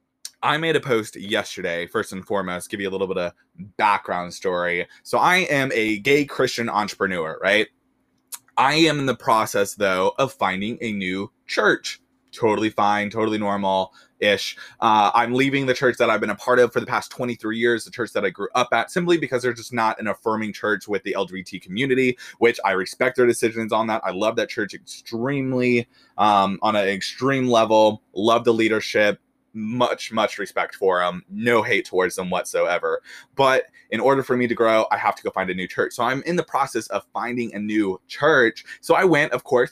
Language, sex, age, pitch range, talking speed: English, male, 20-39, 105-130 Hz, 200 wpm